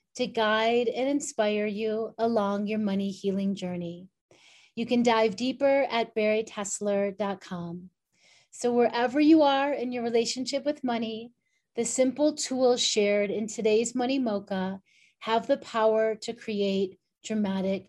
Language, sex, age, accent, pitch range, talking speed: English, female, 30-49, American, 210-270 Hz, 130 wpm